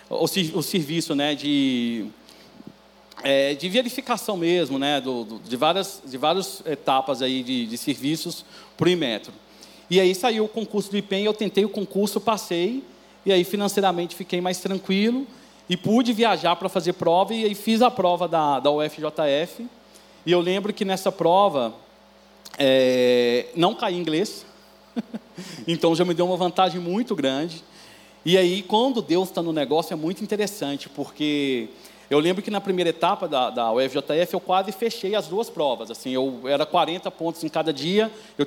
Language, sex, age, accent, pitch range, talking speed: Portuguese, male, 40-59, Brazilian, 150-205 Hz, 170 wpm